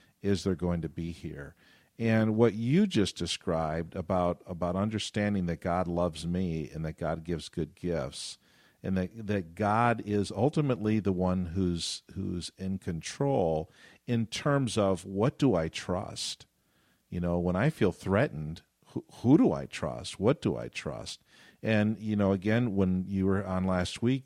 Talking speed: 170 wpm